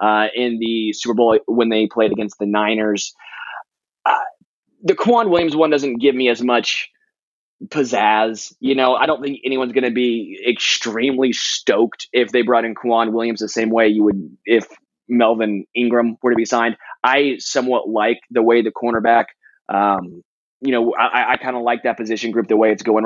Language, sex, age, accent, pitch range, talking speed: English, male, 20-39, American, 110-130 Hz, 190 wpm